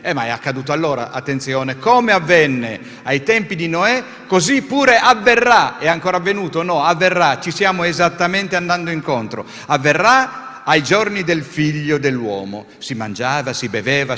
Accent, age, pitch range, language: native, 50-69, 135-195 Hz, Italian